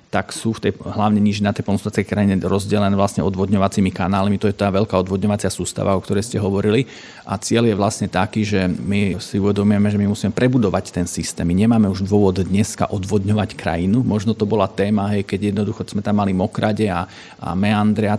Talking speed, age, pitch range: 200 wpm, 40-59, 100-115 Hz